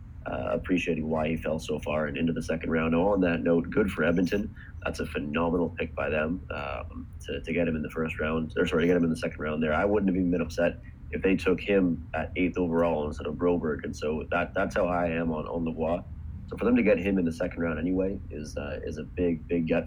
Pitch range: 80-90 Hz